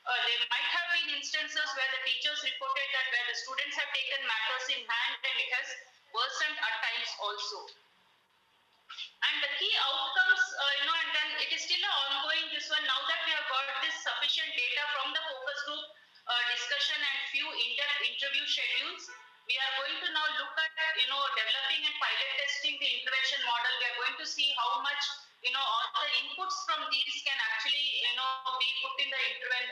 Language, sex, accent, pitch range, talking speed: English, female, Indian, 260-315 Hz, 205 wpm